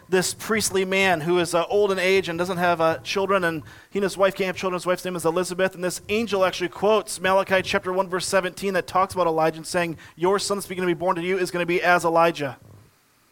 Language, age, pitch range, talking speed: English, 30-49, 150-185 Hz, 260 wpm